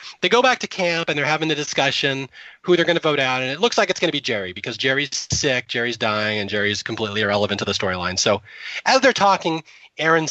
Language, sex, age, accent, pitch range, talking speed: English, male, 30-49, American, 120-165 Hz, 245 wpm